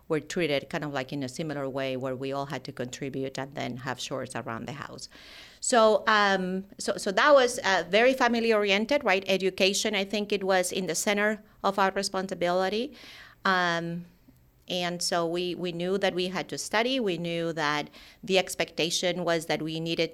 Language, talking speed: English, 190 wpm